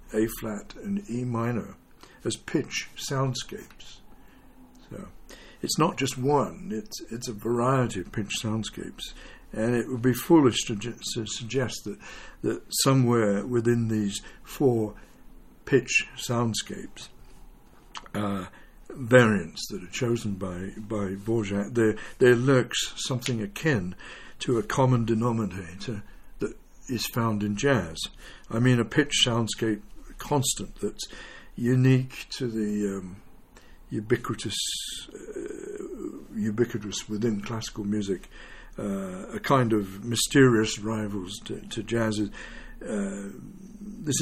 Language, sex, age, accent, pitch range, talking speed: English, male, 60-79, British, 105-130 Hz, 115 wpm